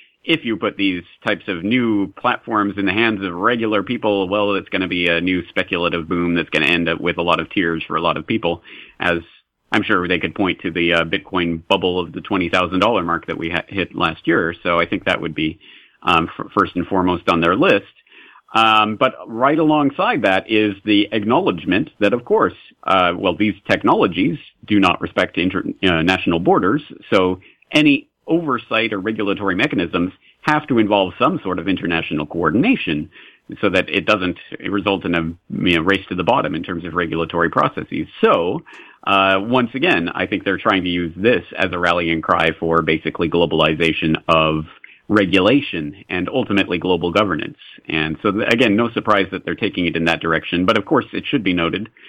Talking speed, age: 190 wpm, 40-59